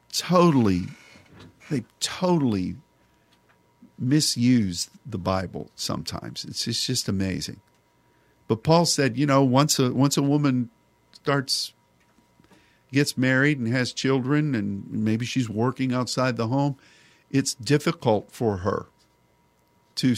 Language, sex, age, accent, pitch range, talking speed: English, male, 50-69, American, 110-140 Hz, 120 wpm